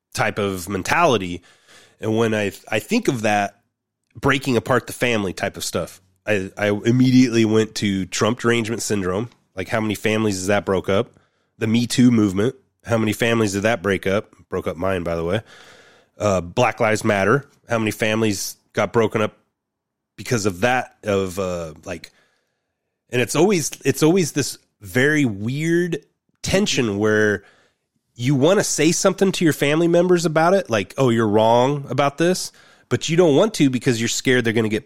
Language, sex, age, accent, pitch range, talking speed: English, male, 30-49, American, 100-130 Hz, 180 wpm